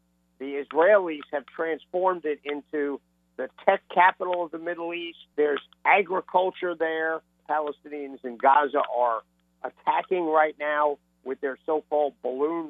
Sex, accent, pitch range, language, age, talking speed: male, American, 130-165 Hz, English, 50-69, 130 wpm